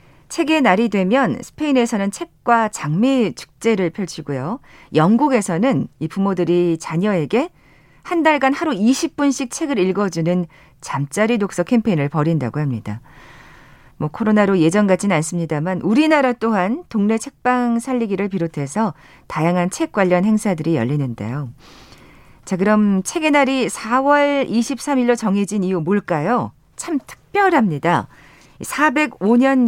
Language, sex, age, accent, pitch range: Korean, female, 40-59, native, 175-255 Hz